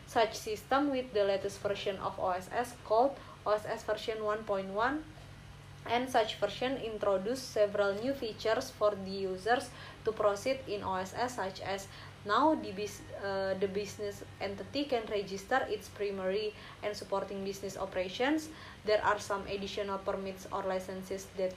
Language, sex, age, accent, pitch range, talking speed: Indonesian, female, 20-39, native, 195-225 Hz, 140 wpm